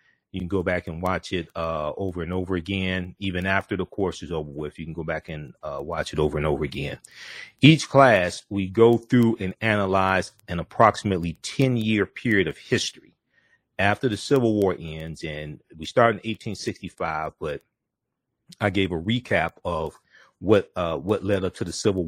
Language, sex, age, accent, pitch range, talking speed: English, male, 40-59, American, 90-115 Hz, 190 wpm